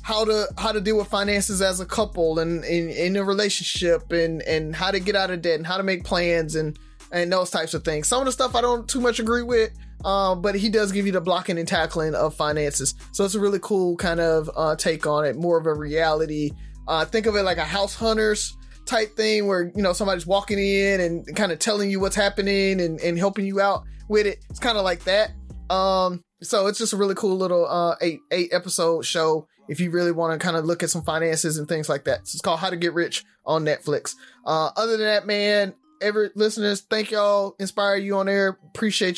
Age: 20-39